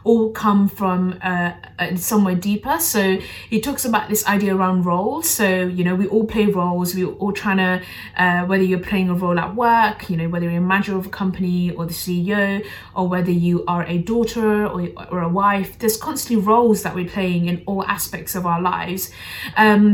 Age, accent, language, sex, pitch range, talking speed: 20-39, British, English, female, 180-210 Hz, 205 wpm